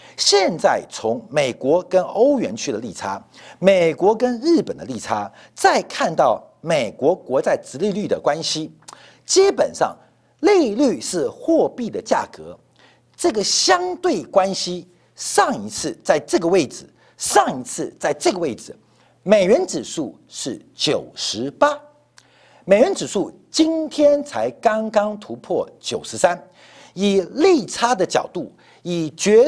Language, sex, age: Chinese, male, 50-69